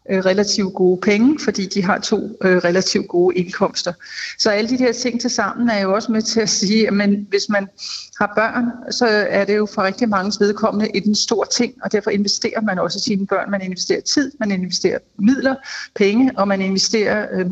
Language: Danish